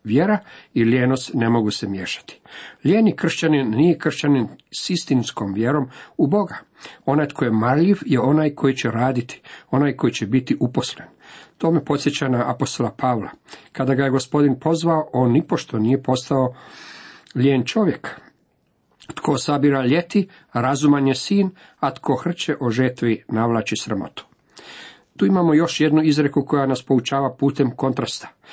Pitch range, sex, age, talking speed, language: 120-150 Hz, male, 50-69, 145 wpm, Croatian